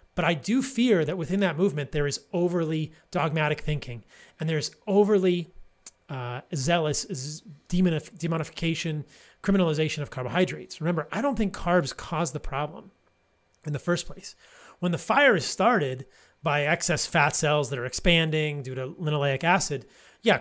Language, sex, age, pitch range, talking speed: English, male, 30-49, 145-185 Hz, 150 wpm